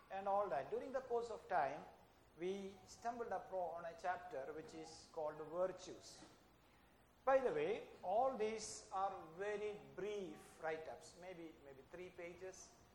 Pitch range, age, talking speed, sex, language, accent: 160-205 Hz, 60-79, 135 wpm, male, English, Indian